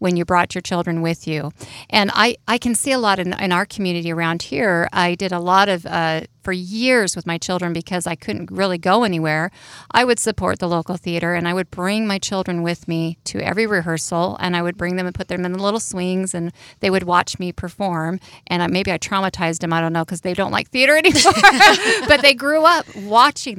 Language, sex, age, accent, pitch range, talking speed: English, female, 40-59, American, 170-220 Hz, 230 wpm